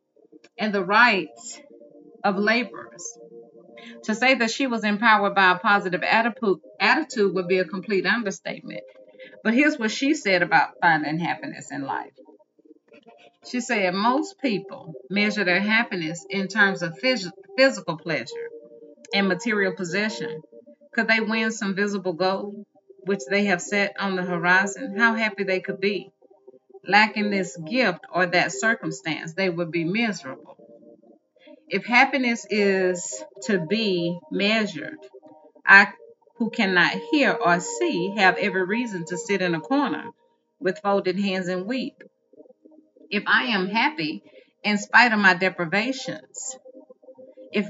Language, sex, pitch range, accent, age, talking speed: English, female, 180-230 Hz, American, 30-49, 135 wpm